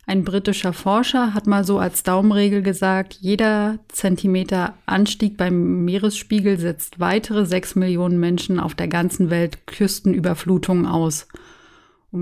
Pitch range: 175-210 Hz